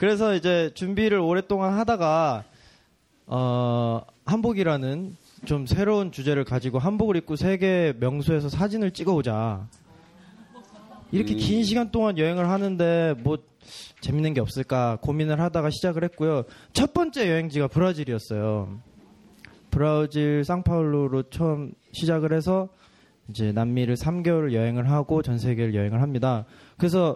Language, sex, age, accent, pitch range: Korean, male, 20-39, native, 125-185 Hz